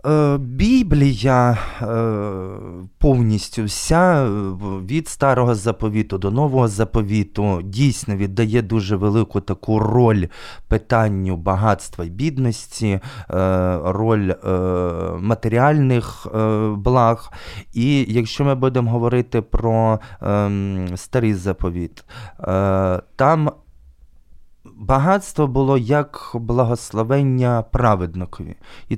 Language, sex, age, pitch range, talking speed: Ukrainian, male, 20-39, 100-120 Hz, 75 wpm